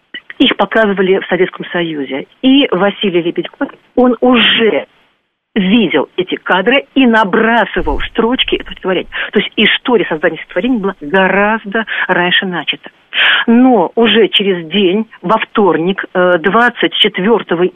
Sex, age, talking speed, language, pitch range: female, 50-69, 115 wpm, Russian, 180-240 Hz